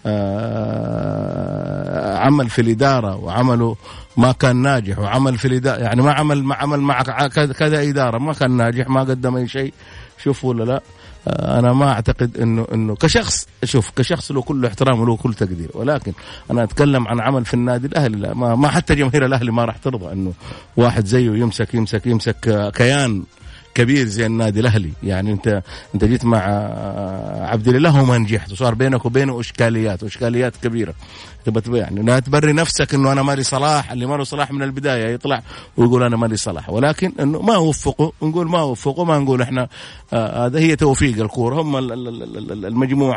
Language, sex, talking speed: Arabic, male, 165 wpm